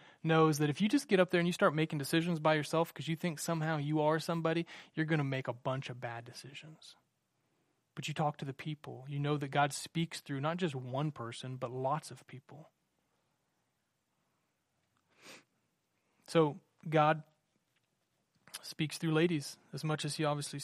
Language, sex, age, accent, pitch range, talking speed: English, male, 30-49, American, 145-175 Hz, 175 wpm